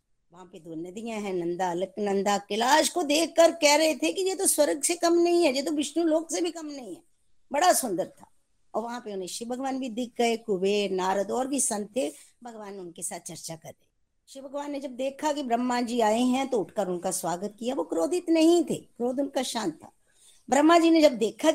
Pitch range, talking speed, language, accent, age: 210-310 Hz, 230 wpm, Hindi, native, 60-79